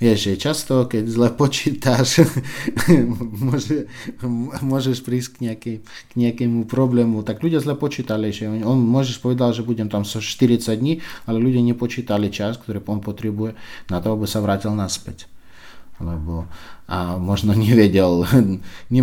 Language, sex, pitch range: Slovak, male, 100-130 Hz